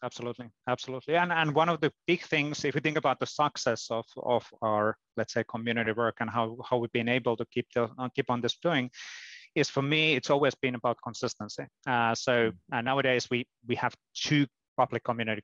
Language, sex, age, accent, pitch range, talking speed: English, male, 30-49, Finnish, 115-135 Hz, 210 wpm